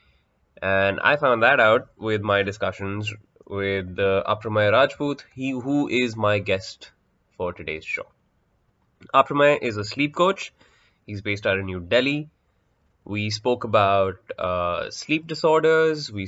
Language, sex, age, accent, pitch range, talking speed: English, male, 20-39, Indian, 100-135 Hz, 140 wpm